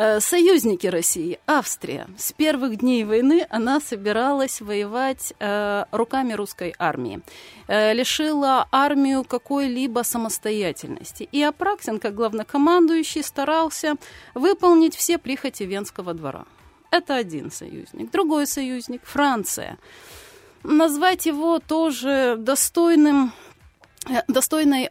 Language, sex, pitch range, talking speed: Russian, female, 220-285 Hz, 95 wpm